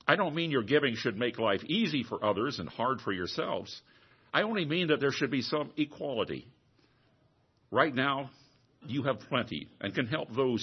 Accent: American